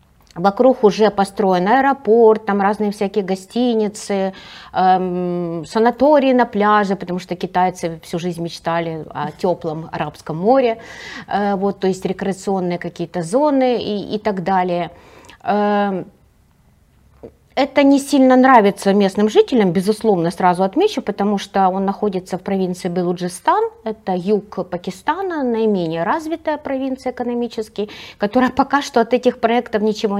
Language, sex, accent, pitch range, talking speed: Russian, female, native, 180-240 Hz, 125 wpm